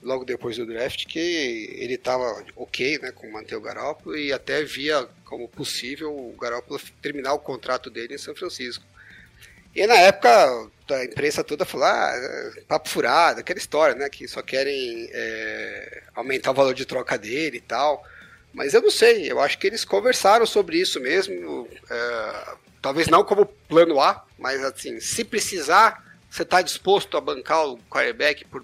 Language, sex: Portuguese, male